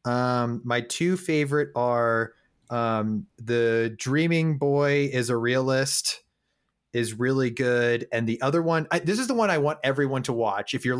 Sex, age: male, 30-49